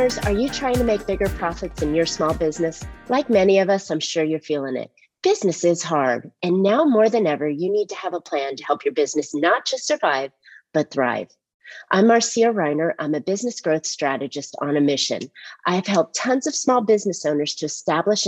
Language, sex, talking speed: English, female, 210 wpm